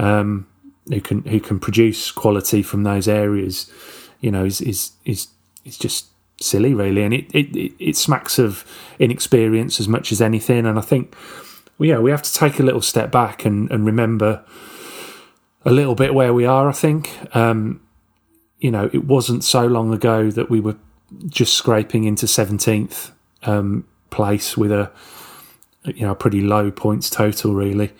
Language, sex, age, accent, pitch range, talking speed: English, male, 30-49, British, 105-120 Hz, 175 wpm